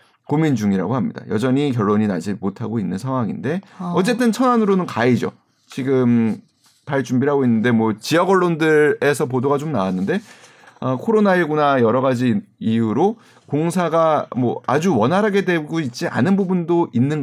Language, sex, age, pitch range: Korean, male, 30-49, 125-180 Hz